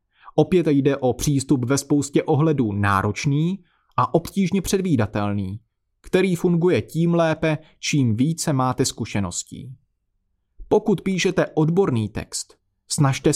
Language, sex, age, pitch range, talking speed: Czech, male, 30-49, 115-160 Hz, 110 wpm